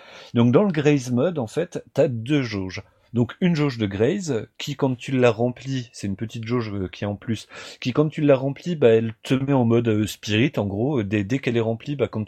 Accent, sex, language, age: French, male, French, 30-49